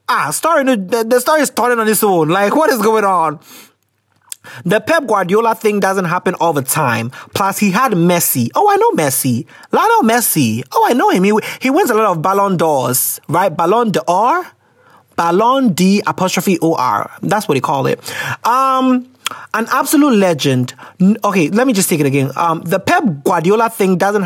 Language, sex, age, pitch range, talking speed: English, male, 30-49, 165-245 Hz, 190 wpm